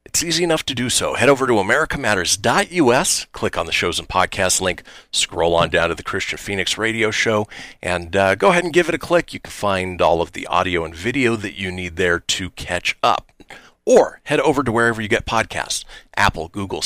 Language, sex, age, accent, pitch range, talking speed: English, male, 40-59, American, 90-130 Hz, 215 wpm